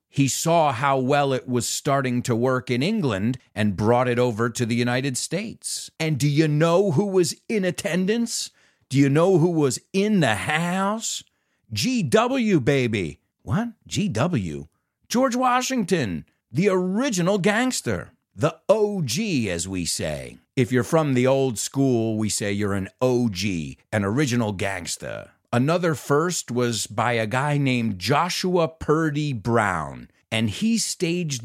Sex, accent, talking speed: male, American, 145 wpm